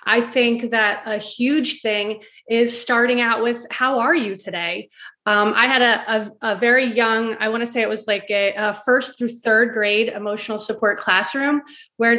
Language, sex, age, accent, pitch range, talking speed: English, female, 30-49, American, 215-255 Hz, 185 wpm